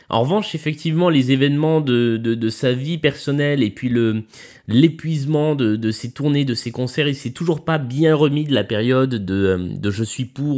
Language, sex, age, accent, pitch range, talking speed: French, male, 20-39, French, 110-150 Hz, 215 wpm